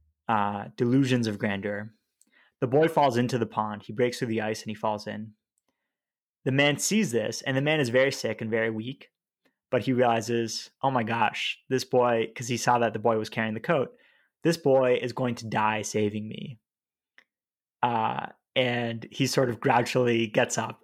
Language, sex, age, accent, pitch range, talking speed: English, male, 20-39, American, 110-130 Hz, 190 wpm